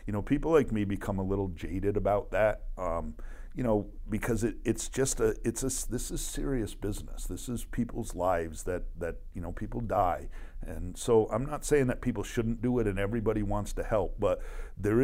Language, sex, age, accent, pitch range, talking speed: English, male, 50-69, American, 95-120 Hz, 210 wpm